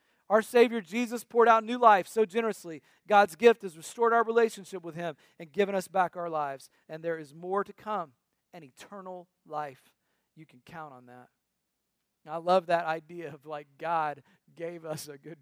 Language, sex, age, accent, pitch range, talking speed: English, male, 40-59, American, 155-200 Hz, 185 wpm